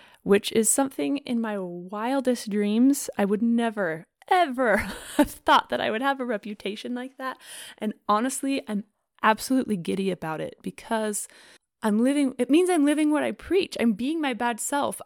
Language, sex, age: English, female, 20-39